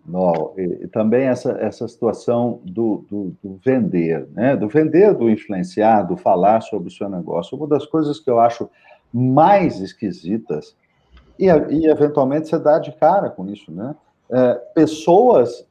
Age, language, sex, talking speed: 50-69, Portuguese, male, 160 wpm